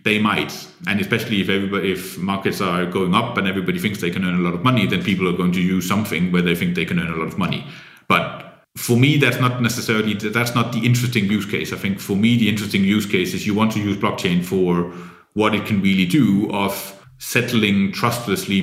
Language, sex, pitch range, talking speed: English, male, 95-115 Hz, 235 wpm